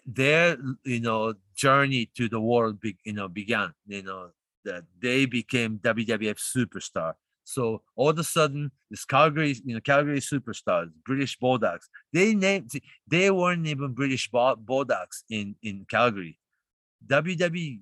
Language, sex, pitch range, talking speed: English, male, 105-140 Hz, 140 wpm